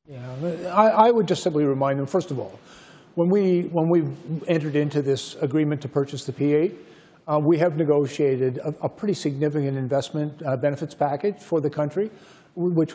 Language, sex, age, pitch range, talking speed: English, male, 50-69, 145-175 Hz, 175 wpm